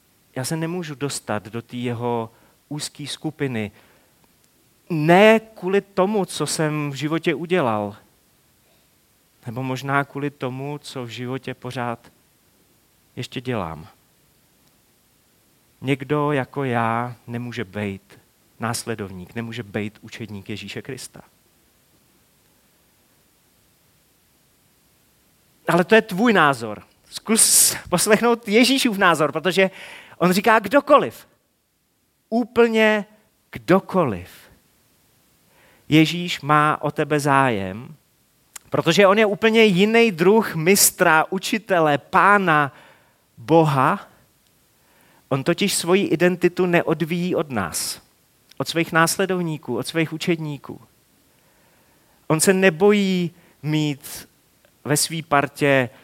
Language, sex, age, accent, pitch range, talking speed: Czech, male, 30-49, native, 125-180 Hz, 95 wpm